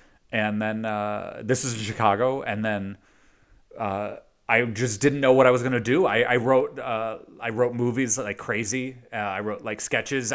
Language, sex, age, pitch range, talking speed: English, male, 30-49, 110-130 Hz, 195 wpm